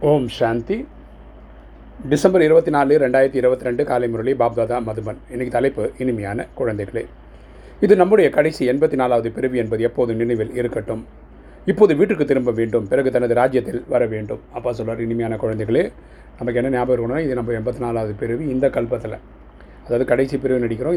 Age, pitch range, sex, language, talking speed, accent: 30-49, 115-130 Hz, male, Tamil, 145 wpm, native